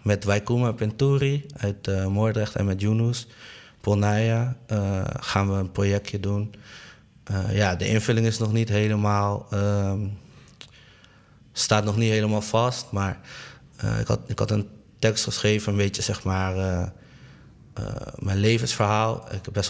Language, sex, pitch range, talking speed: Dutch, male, 100-115 Hz, 150 wpm